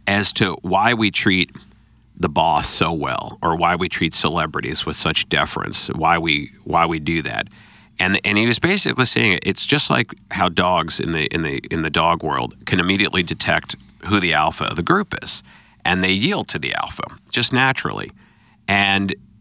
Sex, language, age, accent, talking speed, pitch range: male, English, 40-59, American, 190 wpm, 85-105 Hz